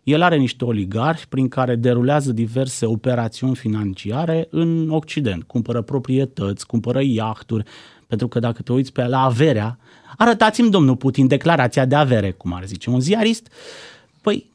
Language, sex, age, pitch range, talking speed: Romanian, male, 30-49, 105-145 Hz, 150 wpm